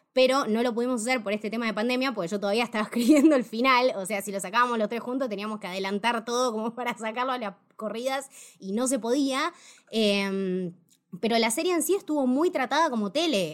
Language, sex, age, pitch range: Spanish, female, 20-39, 195-255 Hz